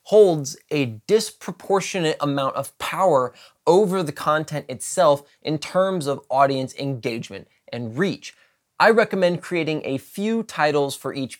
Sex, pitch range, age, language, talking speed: male, 135-180 Hz, 20-39, English, 130 wpm